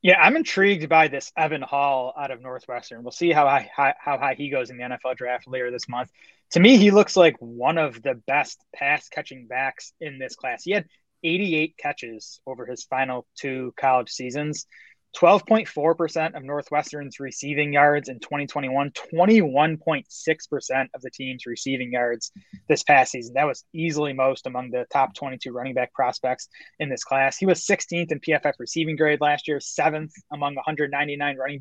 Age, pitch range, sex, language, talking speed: 20-39, 130-160 Hz, male, English, 170 wpm